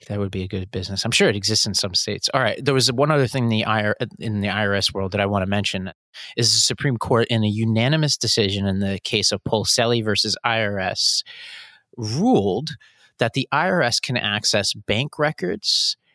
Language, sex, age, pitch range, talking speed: English, male, 30-49, 105-130 Hz, 195 wpm